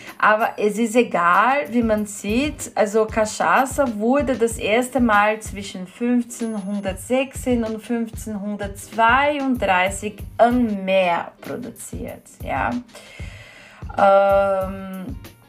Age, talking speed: 30-49, 85 wpm